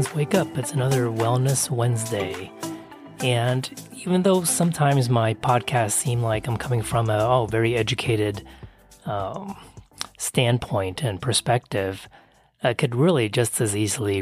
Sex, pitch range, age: male, 100-130 Hz, 30-49